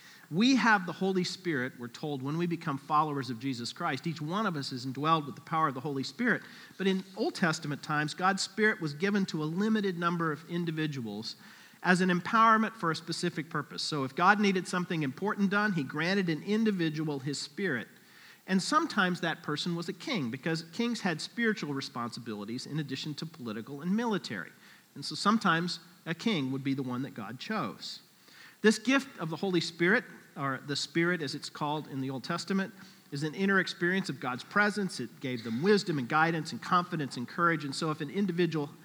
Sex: male